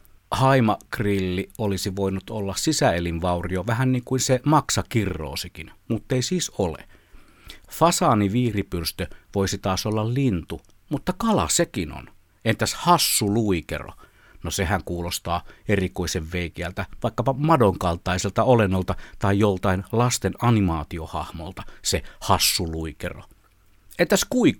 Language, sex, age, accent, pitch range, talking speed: Finnish, male, 50-69, native, 90-110 Hz, 100 wpm